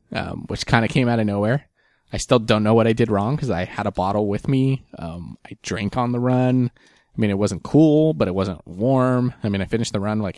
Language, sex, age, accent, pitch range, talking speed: English, male, 20-39, American, 95-120 Hz, 260 wpm